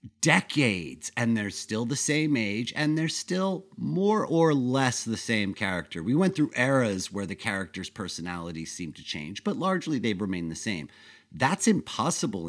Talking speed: 170 wpm